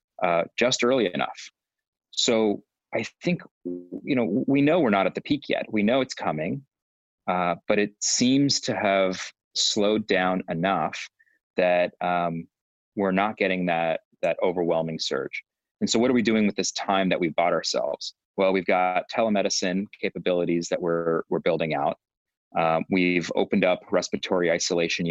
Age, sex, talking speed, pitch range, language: 30-49, male, 165 wpm, 85-110 Hz, English